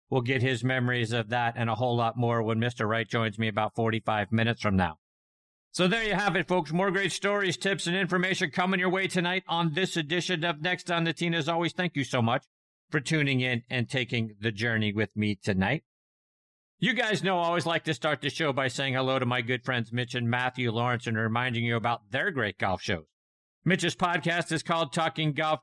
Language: English